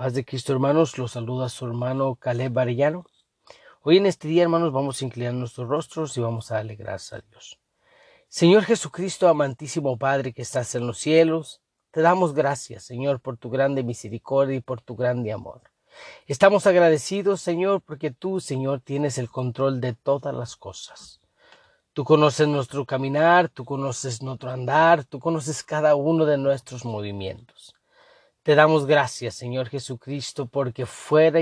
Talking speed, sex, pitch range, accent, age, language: 160 wpm, male, 130-170 Hz, Mexican, 40-59, Spanish